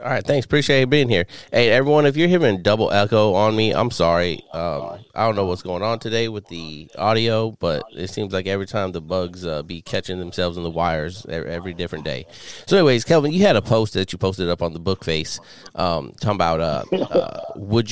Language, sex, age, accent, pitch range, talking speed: English, male, 30-49, American, 90-120 Hz, 225 wpm